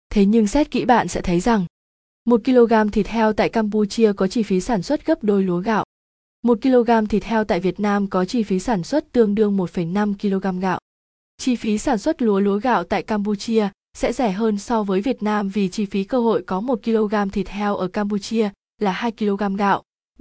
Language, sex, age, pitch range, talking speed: Vietnamese, female, 20-39, 195-230 Hz, 215 wpm